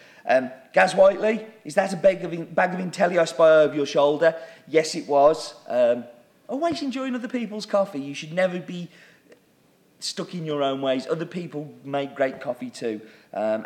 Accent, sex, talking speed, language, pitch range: British, male, 180 wpm, English, 120-185 Hz